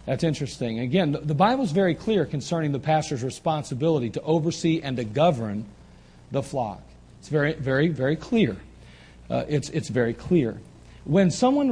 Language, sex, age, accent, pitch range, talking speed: English, male, 40-59, American, 130-170 Hz, 160 wpm